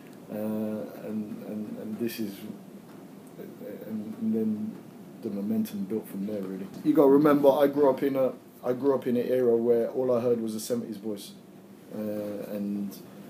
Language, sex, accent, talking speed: English, male, British, 175 wpm